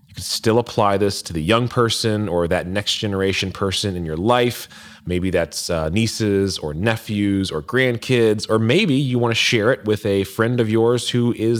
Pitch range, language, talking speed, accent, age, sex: 95-115 Hz, English, 190 wpm, American, 30-49, male